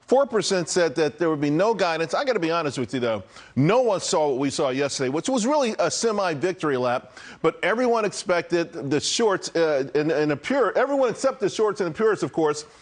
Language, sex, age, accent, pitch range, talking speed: English, male, 40-59, American, 155-210 Hz, 230 wpm